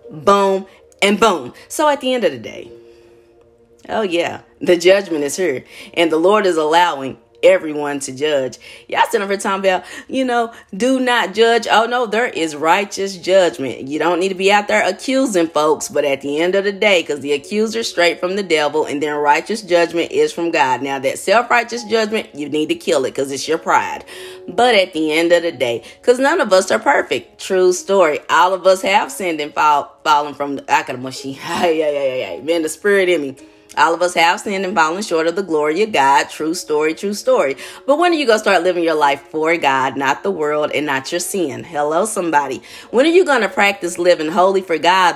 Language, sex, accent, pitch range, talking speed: English, female, American, 155-220 Hz, 220 wpm